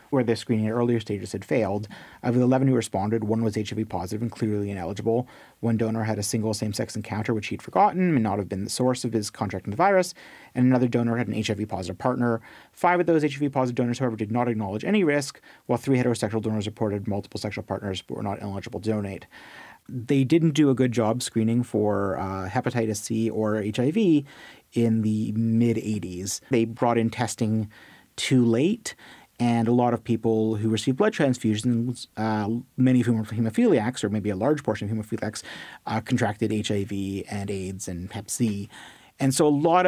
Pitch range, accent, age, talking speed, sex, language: 105-125 Hz, American, 30-49, 195 wpm, male, English